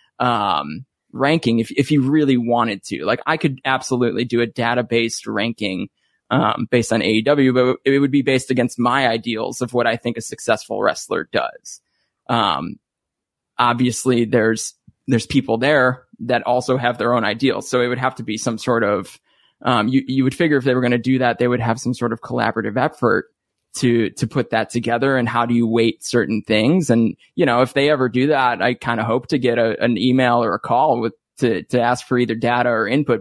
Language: English